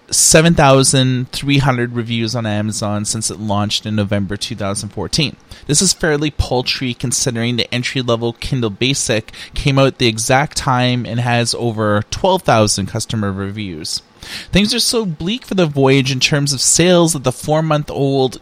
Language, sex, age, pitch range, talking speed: English, male, 20-39, 115-145 Hz, 145 wpm